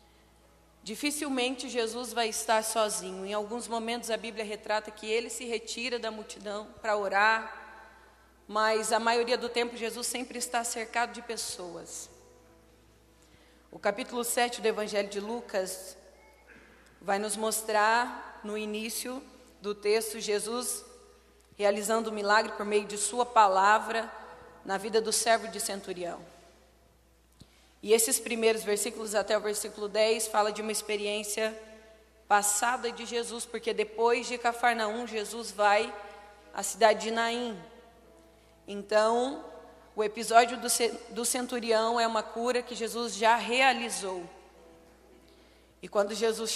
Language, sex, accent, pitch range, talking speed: Portuguese, female, Brazilian, 210-235 Hz, 130 wpm